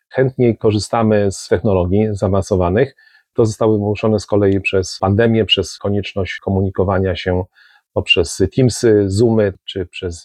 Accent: native